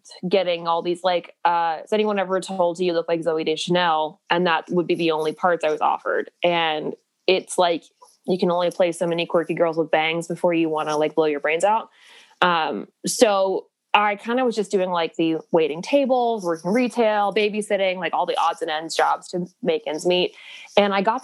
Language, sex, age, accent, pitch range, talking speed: English, female, 20-39, American, 170-210 Hz, 215 wpm